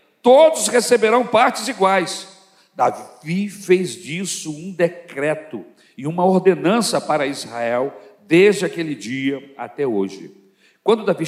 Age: 60-79